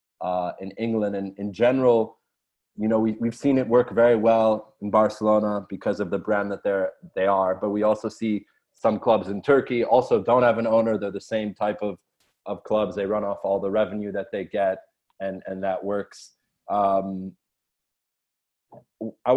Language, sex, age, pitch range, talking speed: English, male, 20-39, 100-125 Hz, 185 wpm